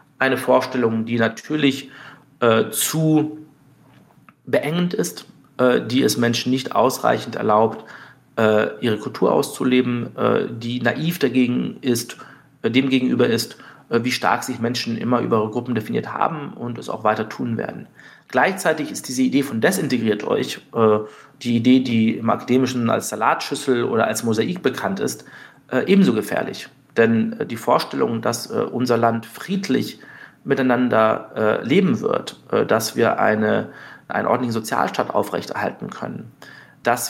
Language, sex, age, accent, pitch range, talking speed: German, male, 40-59, German, 115-135 Hz, 140 wpm